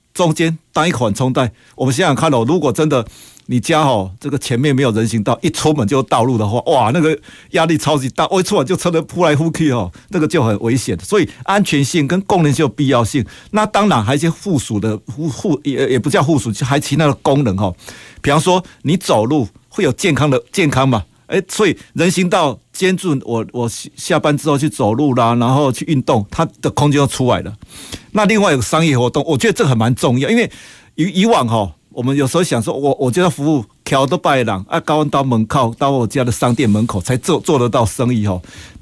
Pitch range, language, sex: 120-160 Hz, Chinese, male